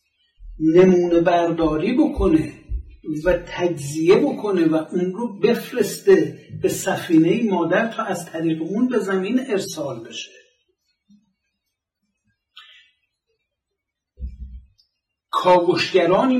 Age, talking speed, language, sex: 60-79, 80 wpm, Persian, male